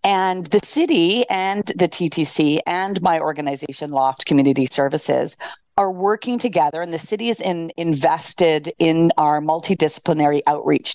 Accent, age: American, 40-59